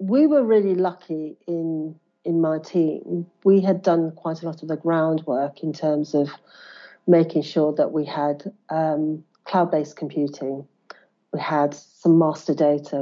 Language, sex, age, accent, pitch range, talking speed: English, female, 40-59, British, 150-175 Hz, 150 wpm